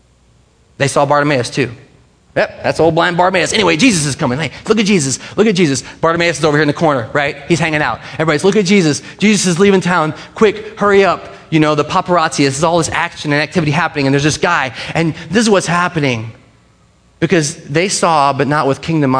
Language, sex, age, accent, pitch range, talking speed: English, male, 30-49, American, 130-180 Hz, 220 wpm